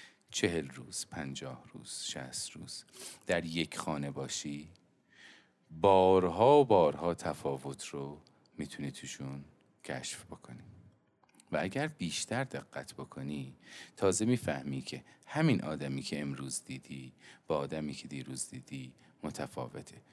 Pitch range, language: 70-85 Hz, Persian